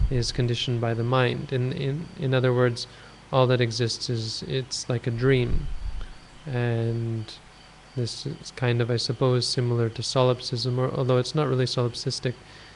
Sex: male